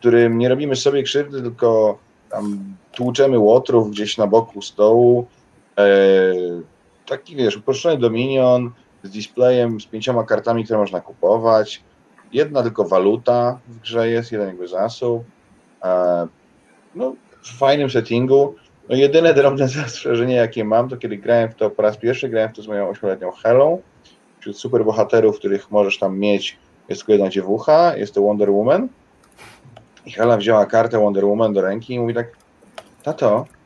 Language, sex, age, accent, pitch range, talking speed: Polish, male, 30-49, native, 105-130 Hz, 155 wpm